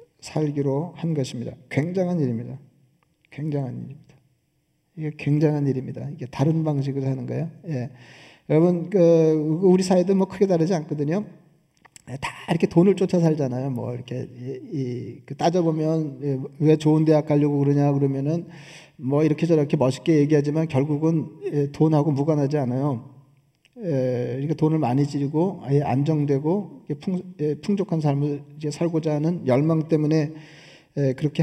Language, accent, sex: Korean, native, male